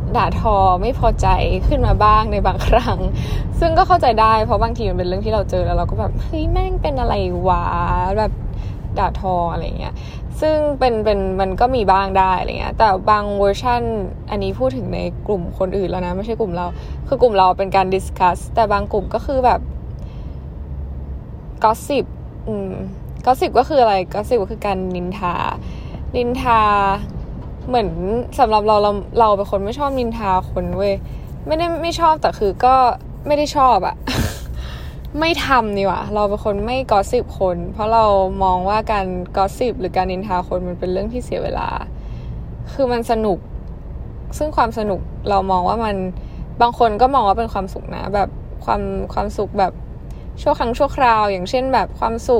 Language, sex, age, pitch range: Thai, female, 10-29, 180-240 Hz